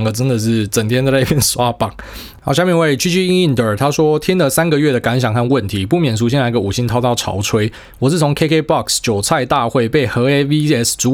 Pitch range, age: 110-140 Hz, 20-39